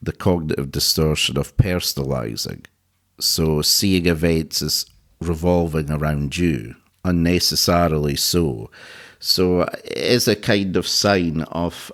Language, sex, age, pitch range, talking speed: English, male, 50-69, 80-95 Hz, 110 wpm